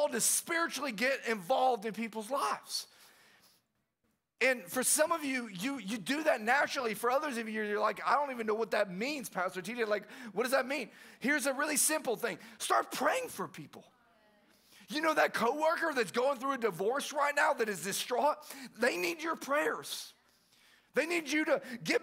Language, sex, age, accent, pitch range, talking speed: English, male, 40-59, American, 230-290 Hz, 190 wpm